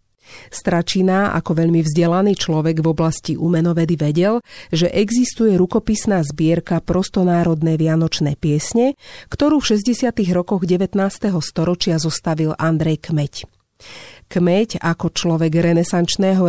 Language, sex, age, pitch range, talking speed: Slovak, female, 40-59, 160-205 Hz, 105 wpm